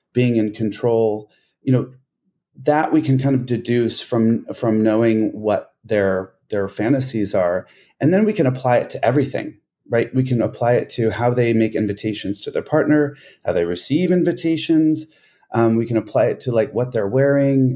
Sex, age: male, 30-49